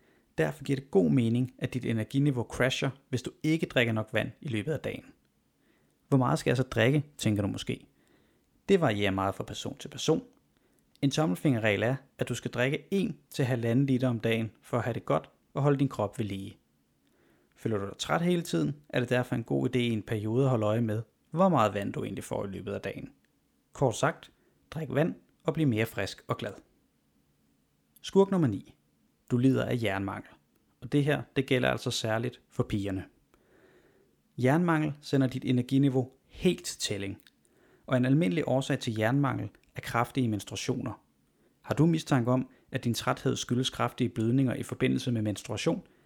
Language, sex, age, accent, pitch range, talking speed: Danish, male, 30-49, native, 110-140 Hz, 190 wpm